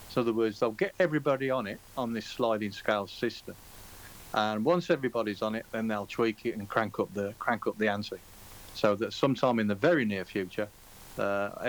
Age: 40-59